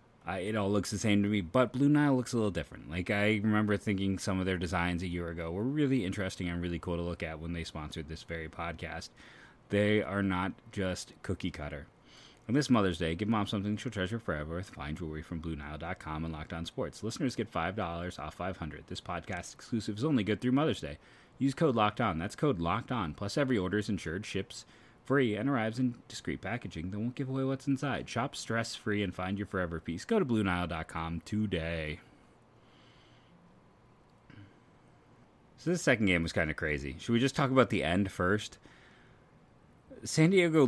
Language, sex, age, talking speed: English, male, 30-49, 200 wpm